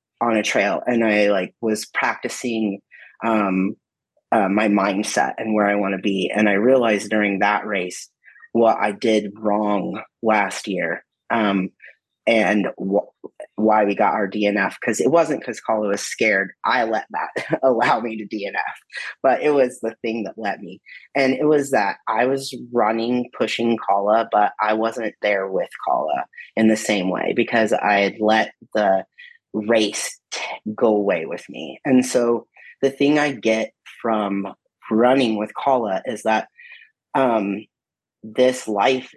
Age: 30-49